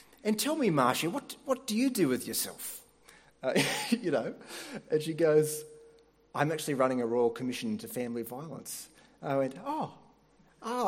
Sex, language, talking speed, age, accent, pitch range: male, English, 165 wpm, 30-49, Australian, 155-220 Hz